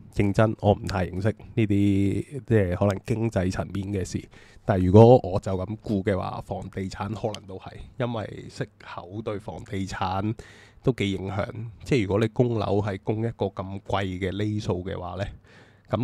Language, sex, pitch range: Chinese, male, 95-115 Hz